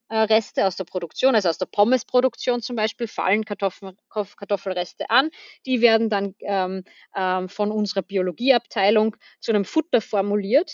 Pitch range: 195-250 Hz